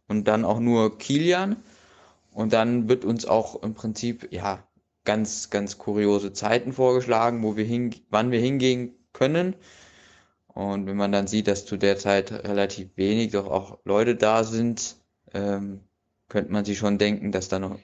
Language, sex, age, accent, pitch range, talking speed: German, male, 20-39, German, 100-115 Hz, 170 wpm